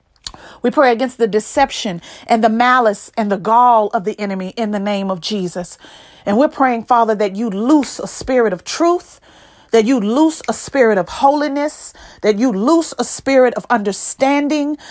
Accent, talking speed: American, 175 wpm